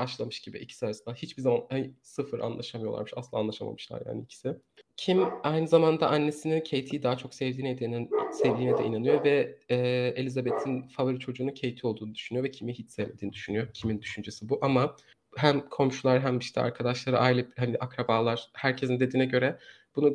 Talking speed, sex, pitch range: 160 wpm, male, 125-145 Hz